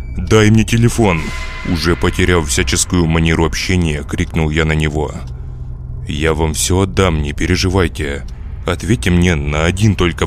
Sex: male